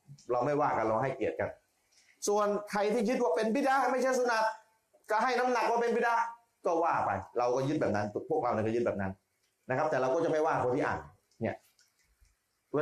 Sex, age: male, 30-49